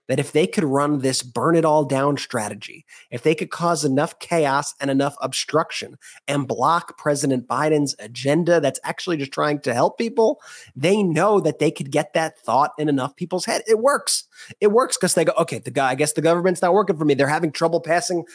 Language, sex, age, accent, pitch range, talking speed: English, male, 30-49, American, 155-215 Hz, 205 wpm